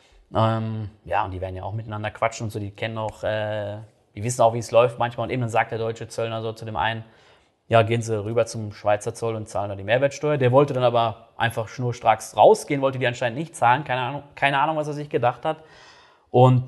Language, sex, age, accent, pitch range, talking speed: German, male, 30-49, German, 100-120 Hz, 240 wpm